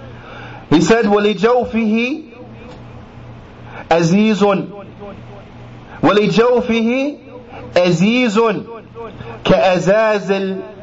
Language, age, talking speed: English, 30-49, 55 wpm